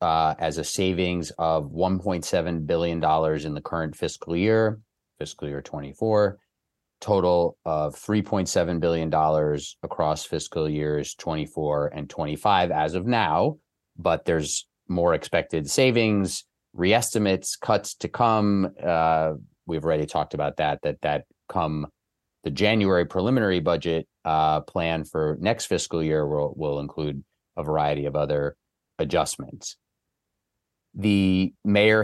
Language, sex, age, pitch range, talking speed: English, male, 30-49, 80-100 Hz, 120 wpm